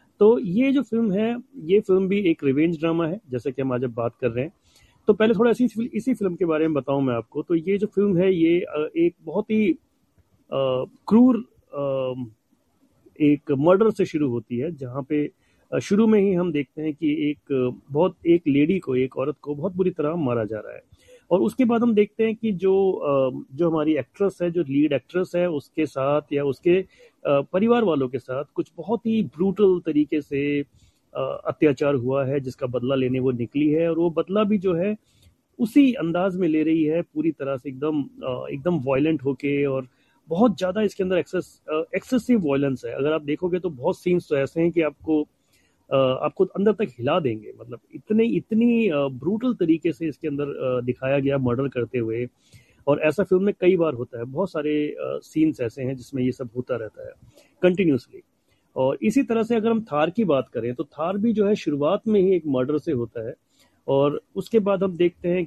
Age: 40-59